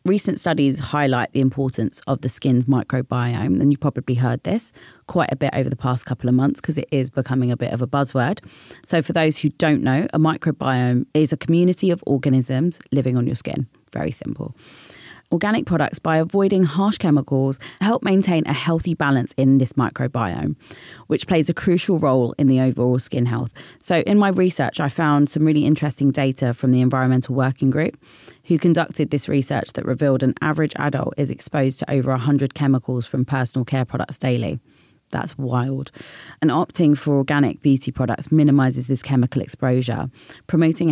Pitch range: 130-155 Hz